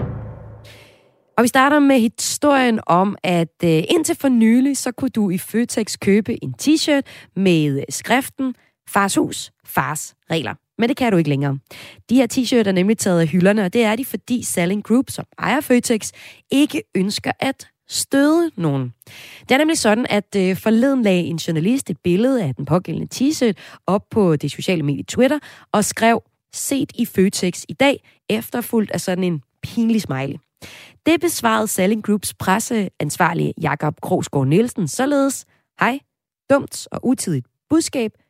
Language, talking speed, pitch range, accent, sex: Danish, 160 wpm, 165-235 Hz, native, female